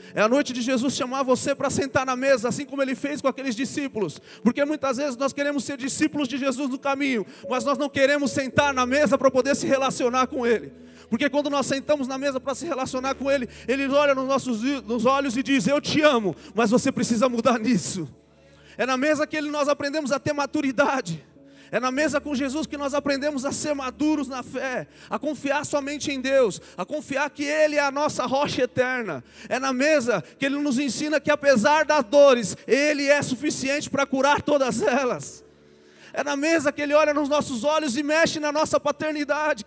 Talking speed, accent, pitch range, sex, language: 205 wpm, Brazilian, 255-295 Hz, male, Portuguese